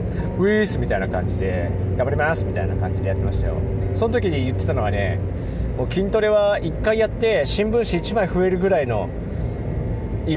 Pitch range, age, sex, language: 95-140 Hz, 20-39, male, Japanese